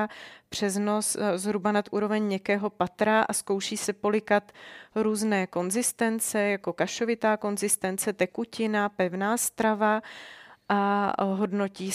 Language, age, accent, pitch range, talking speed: Czech, 30-49, native, 195-220 Hz, 105 wpm